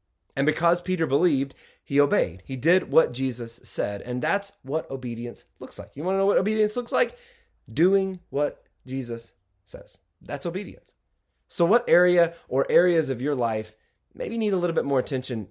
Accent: American